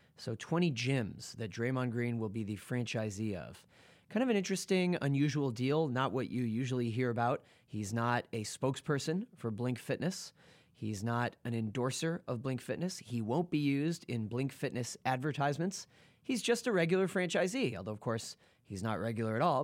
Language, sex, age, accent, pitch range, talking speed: English, male, 30-49, American, 115-155 Hz, 175 wpm